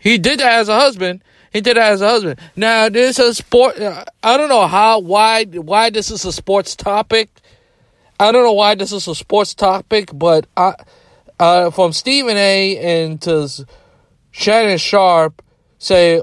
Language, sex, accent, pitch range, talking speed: English, male, American, 160-210 Hz, 180 wpm